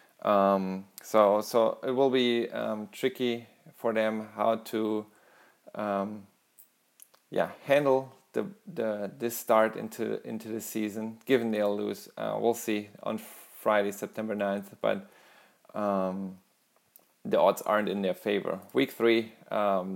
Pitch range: 100-120 Hz